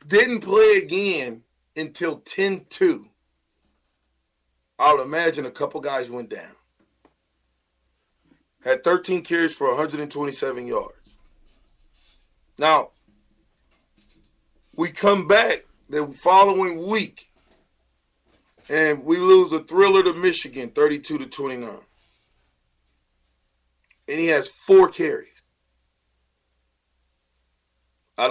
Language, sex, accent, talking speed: English, male, American, 85 wpm